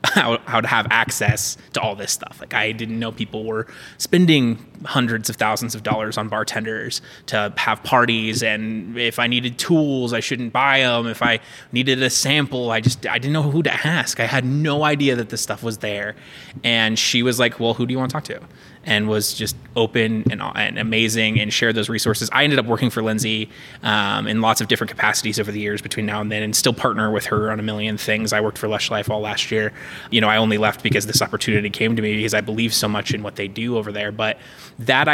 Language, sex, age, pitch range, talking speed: English, male, 20-39, 110-130 Hz, 235 wpm